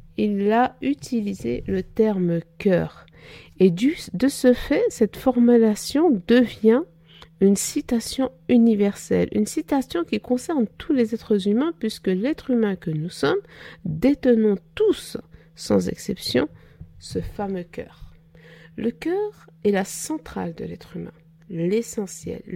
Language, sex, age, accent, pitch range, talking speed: French, female, 50-69, French, 170-260 Hz, 120 wpm